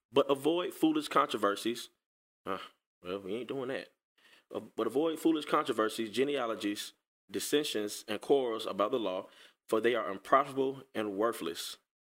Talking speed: 135 wpm